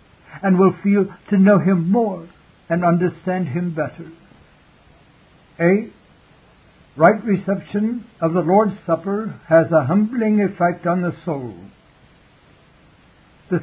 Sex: male